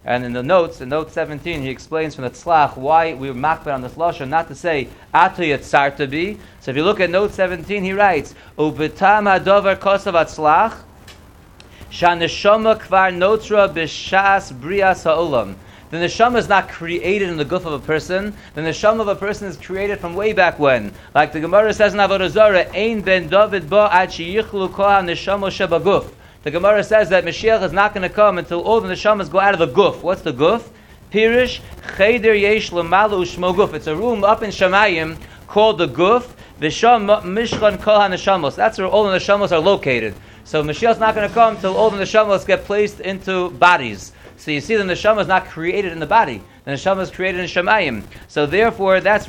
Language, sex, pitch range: English, male, 160-205 Hz